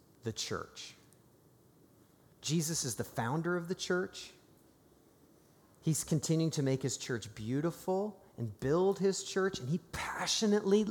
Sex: male